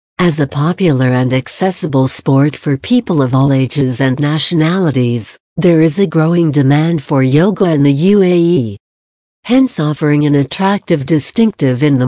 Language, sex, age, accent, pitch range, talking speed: English, female, 60-79, American, 140-185 Hz, 150 wpm